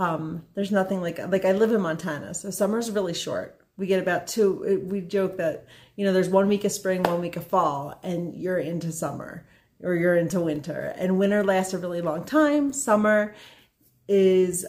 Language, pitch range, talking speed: English, 180-215 Hz, 195 wpm